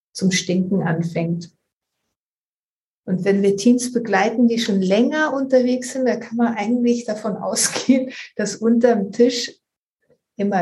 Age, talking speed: 60-79, 130 wpm